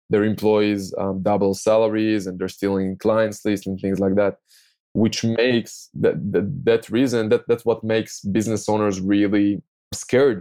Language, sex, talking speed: English, male, 160 wpm